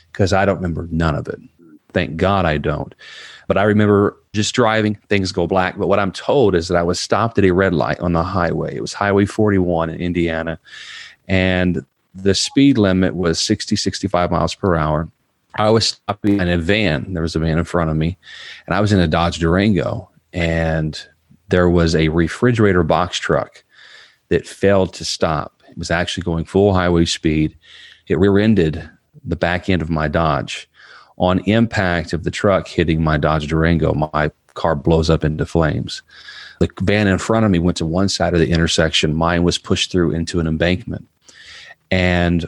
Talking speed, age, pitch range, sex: 190 wpm, 40-59, 80-100 Hz, male